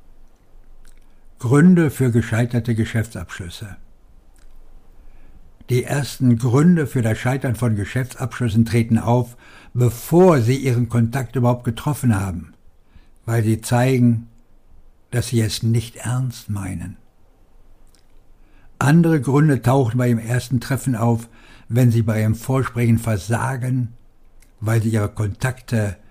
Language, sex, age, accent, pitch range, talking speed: German, male, 60-79, German, 105-130 Hz, 110 wpm